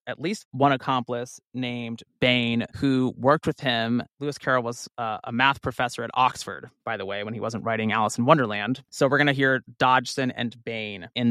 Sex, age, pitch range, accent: male, 30-49, 115-140 Hz, American